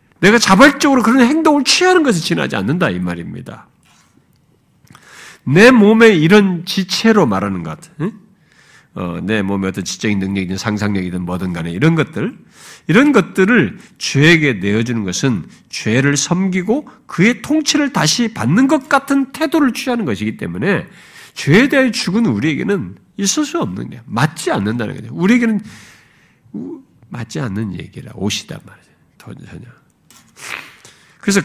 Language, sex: Korean, male